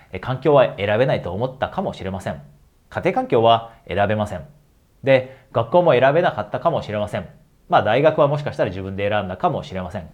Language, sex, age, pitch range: Japanese, male, 40-59, 100-135 Hz